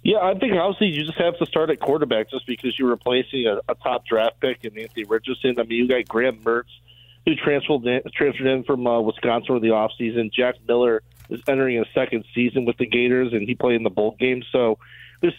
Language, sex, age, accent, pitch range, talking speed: English, male, 30-49, American, 115-135 Hz, 235 wpm